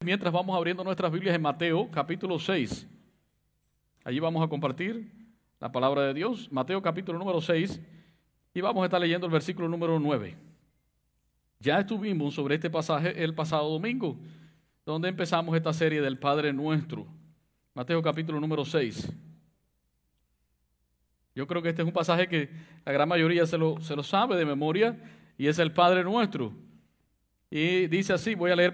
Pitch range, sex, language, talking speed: 140-175 Hz, male, English, 160 wpm